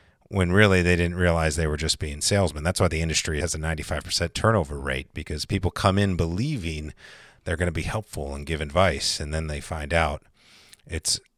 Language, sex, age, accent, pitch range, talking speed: English, male, 40-59, American, 75-90 Hz, 200 wpm